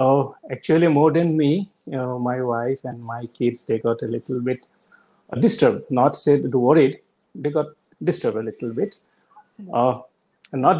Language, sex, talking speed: English, male, 165 wpm